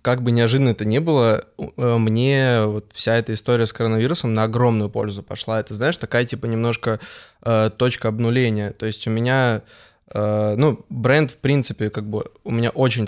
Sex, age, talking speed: male, 20-39, 180 wpm